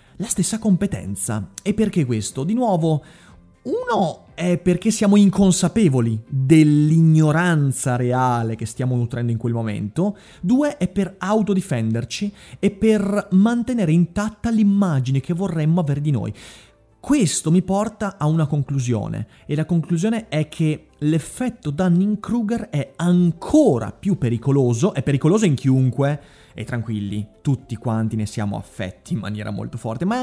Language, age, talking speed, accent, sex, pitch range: Italian, 30-49, 135 wpm, native, male, 130-200 Hz